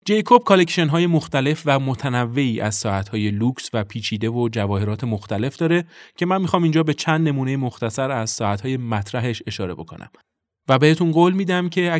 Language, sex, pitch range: Persian, male, 105-140 Hz